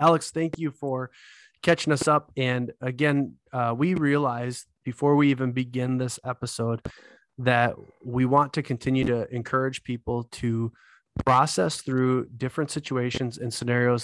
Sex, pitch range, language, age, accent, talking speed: male, 120-135 Hz, English, 20-39, American, 140 wpm